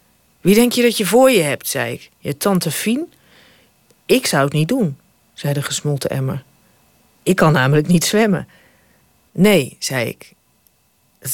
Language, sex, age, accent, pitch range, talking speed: Dutch, female, 40-59, Dutch, 145-215 Hz, 165 wpm